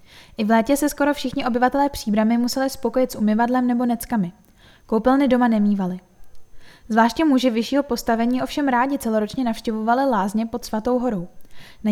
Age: 10-29